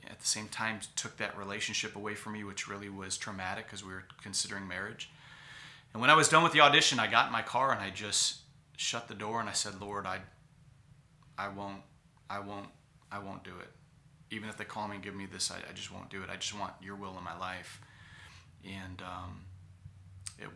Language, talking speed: English, 225 wpm